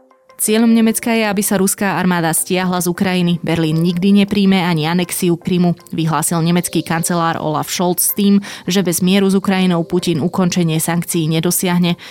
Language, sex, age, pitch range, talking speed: Slovak, female, 20-39, 160-185 Hz, 155 wpm